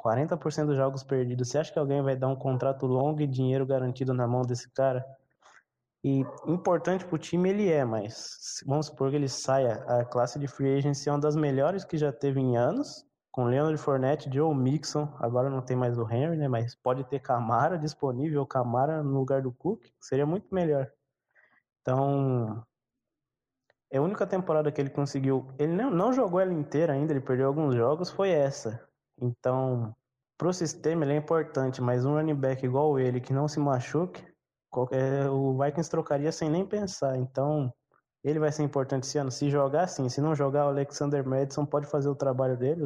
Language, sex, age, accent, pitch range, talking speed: Portuguese, male, 20-39, Brazilian, 130-150 Hz, 190 wpm